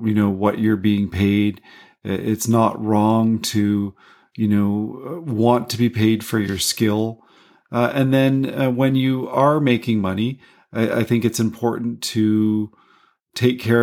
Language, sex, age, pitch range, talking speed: English, male, 40-59, 105-120 Hz, 155 wpm